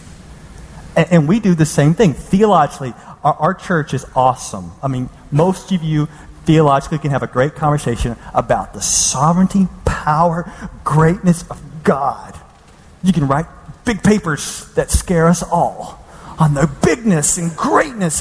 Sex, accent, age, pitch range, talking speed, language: male, American, 40-59, 125-180 Hz, 140 wpm, English